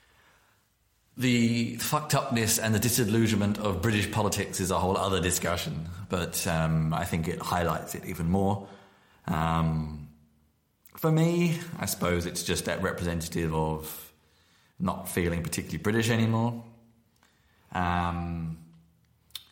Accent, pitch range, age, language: British, 85-110 Hz, 20-39, English